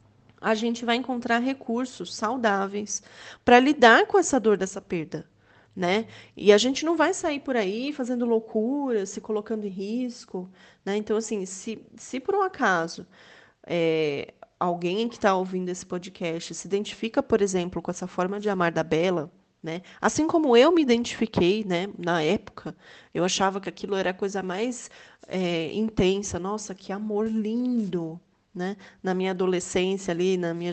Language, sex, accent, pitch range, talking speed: Portuguese, female, Brazilian, 185-245 Hz, 165 wpm